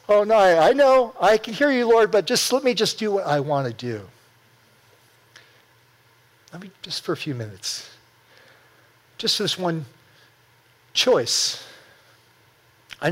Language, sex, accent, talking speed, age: English, male, American, 150 wpm, 50-69